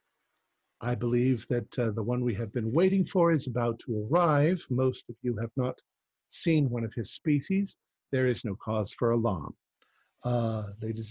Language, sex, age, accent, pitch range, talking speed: English, male, 50-69, American, 105-130 Hz, 180 wpm